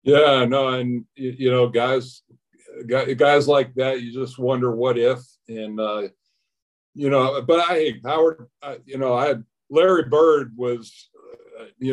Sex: male